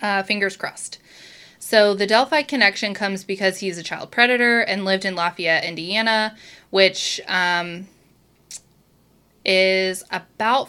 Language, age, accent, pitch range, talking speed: English, 20-39, American, 175-215 Hz, 125 wpm